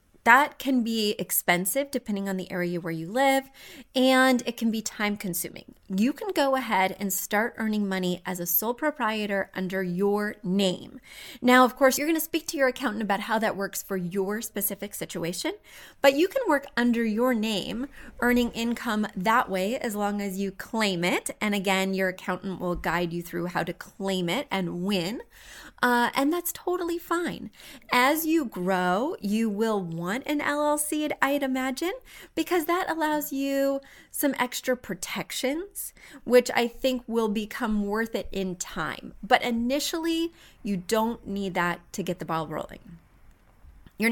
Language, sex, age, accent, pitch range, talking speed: English, female, 20-39, American, 195-265 Hz, 170 wpm